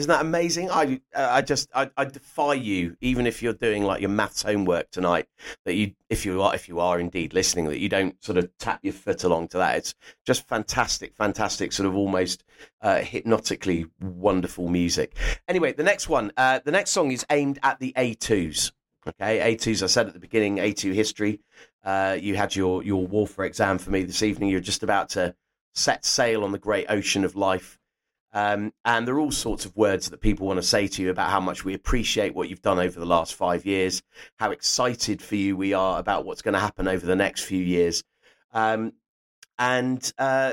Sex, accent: male, British